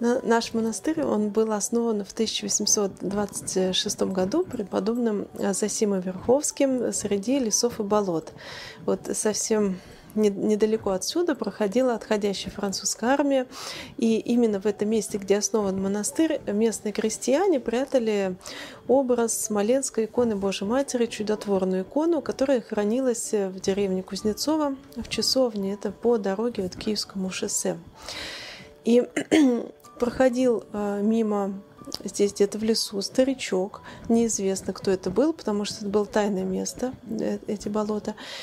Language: Russian